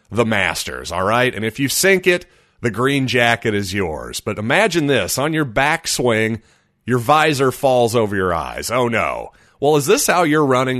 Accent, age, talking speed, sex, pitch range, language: American, 30-49, 190 wpm, male, 105-135 Hz, English